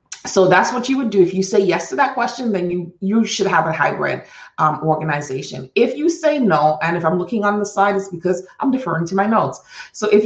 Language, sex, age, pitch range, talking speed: English, female, 30-49, 170-210 Hz, 245 wpm